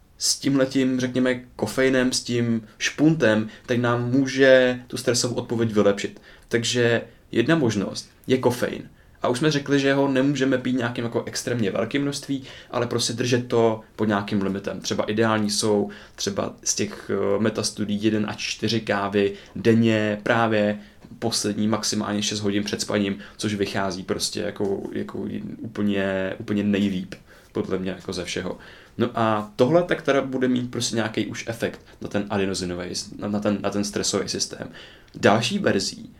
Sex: male